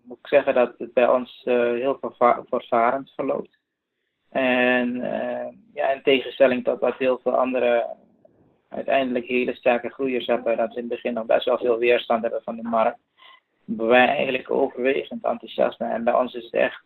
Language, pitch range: Dutch, 115-125 Hz